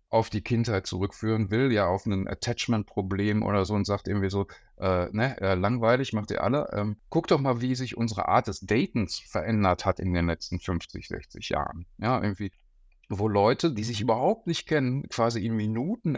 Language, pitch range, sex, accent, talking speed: German, 100-135 Hz, male, German, 195 wpm